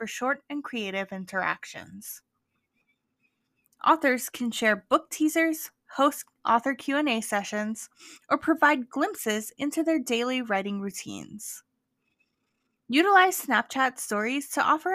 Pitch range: 210-285 Hz